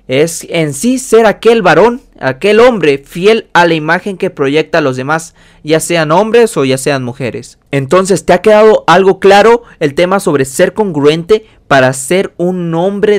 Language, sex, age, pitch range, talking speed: Spanish, male, 30-49, 150-195 Hz, 175 wpm